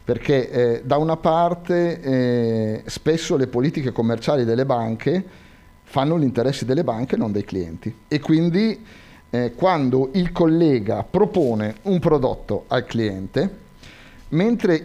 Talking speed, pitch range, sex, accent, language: 130 wpm, 115-155 Hz, male, native, Italian